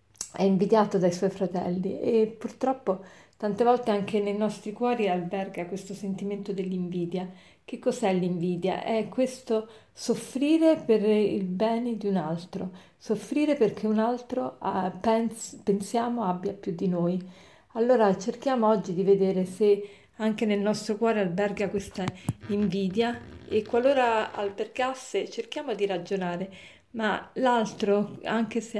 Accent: native